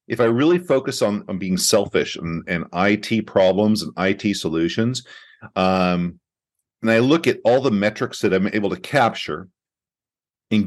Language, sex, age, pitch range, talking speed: English, male, 50-69, 95-130 Hz, 165 wpm